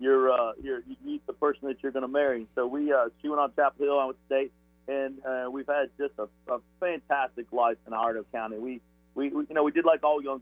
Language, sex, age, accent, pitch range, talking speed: English, male, 50-69, American, 125-140 Hz, 255 wpm